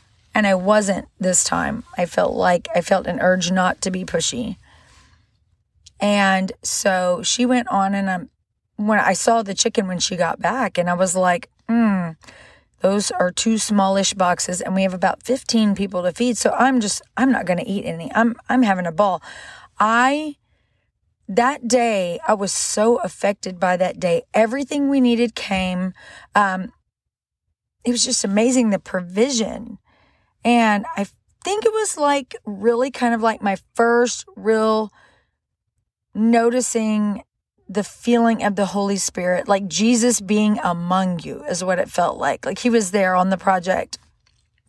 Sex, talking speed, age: female, 165 wpm, 40-59